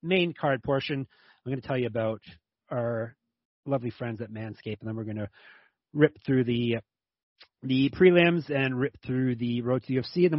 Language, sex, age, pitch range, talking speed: English, male, 30-49, 120-150 Hz, 195 wpm